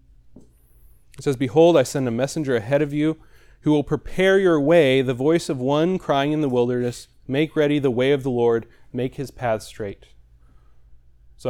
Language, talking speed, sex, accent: English, 185 wpm, male, American